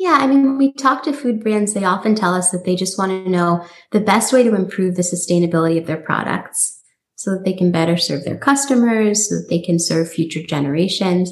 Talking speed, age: 235 wpm, 20-39